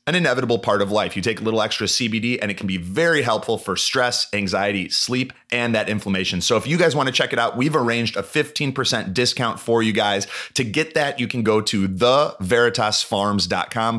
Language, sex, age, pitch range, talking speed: English, male, 30-49, 95-120 Hz, 205 wpm